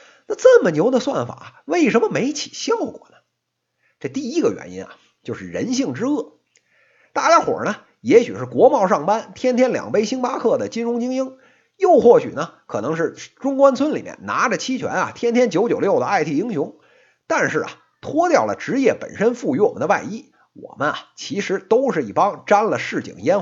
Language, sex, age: Chinese, male, 50-69